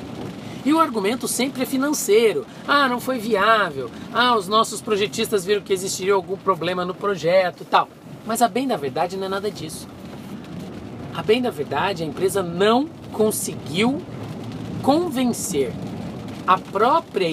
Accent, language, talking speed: Brazilian, Portuguese, 150 wpm